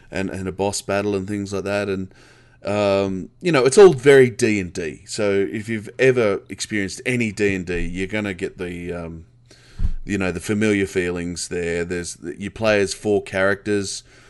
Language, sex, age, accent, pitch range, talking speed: English, male, 20-39, Australian, 90-105 Hz, 170 wpm